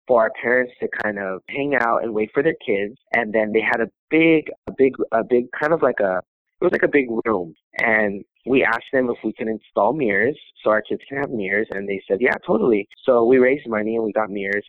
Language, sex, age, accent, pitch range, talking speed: English, male, 20-39, American, 105-125 Hz, 250 wpm